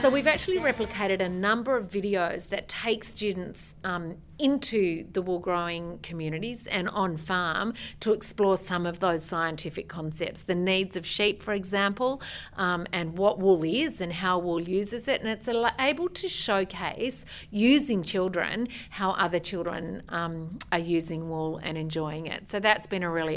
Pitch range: 170-205 Hz